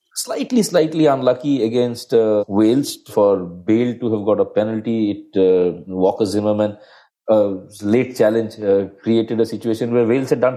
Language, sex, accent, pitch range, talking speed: English, male, Indian, 105-135 Hz, 160 wpm